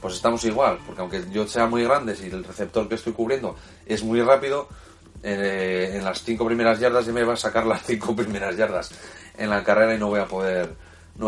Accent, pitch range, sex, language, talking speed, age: Spanish, 90-120 Hz, male, Spanish, 230 wpm, 30-49